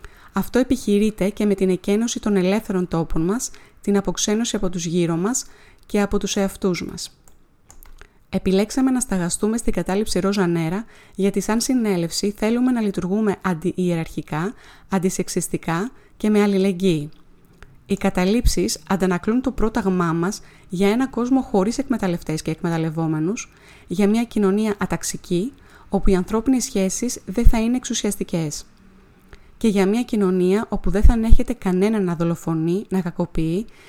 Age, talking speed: 20-39, 135 wpm